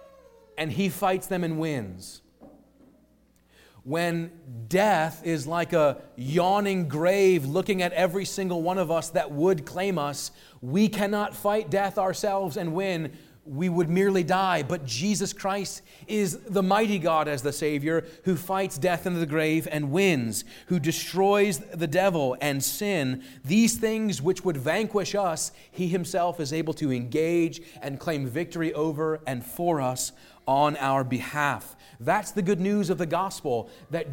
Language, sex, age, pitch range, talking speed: English, male, 30-49, 145-195 Hz, 155 wpm